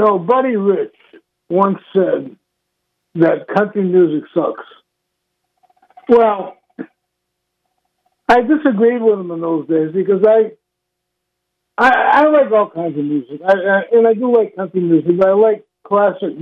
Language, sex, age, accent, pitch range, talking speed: English, male, 60-79, American, 150-195 Hz, 145 wpm